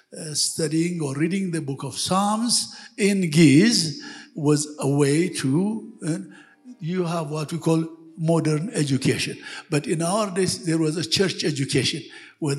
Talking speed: 155 wpm